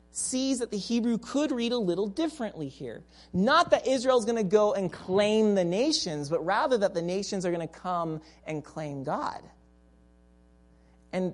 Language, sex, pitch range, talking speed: English, male, 140-215 Hz, 175 wpm